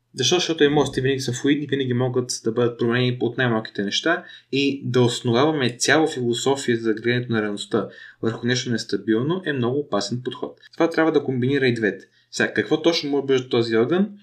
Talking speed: 190 wpm